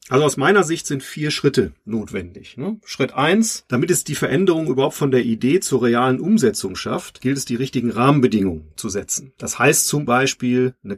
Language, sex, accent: German, male, German